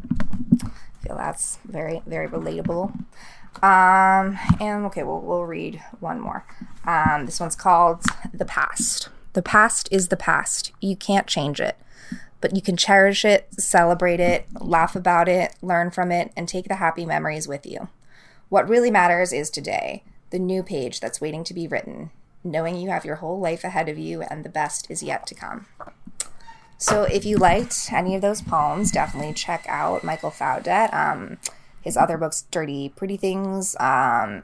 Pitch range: 165-210 Hz